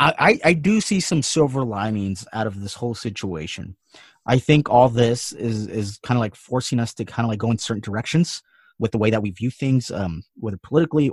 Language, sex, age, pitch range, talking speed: English, male, 30-49, 105-130 Hz, 220 wpm